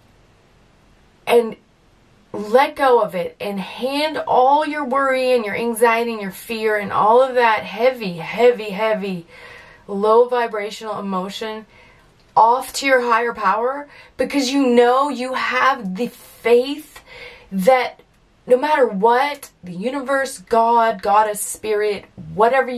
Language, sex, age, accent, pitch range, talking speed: English, female, 20-39, American, 200-255 Hz, 125 wpm